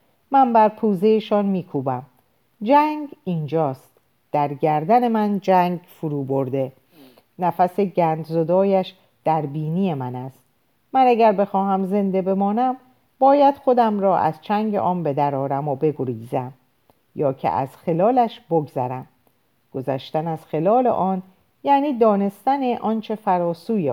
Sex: female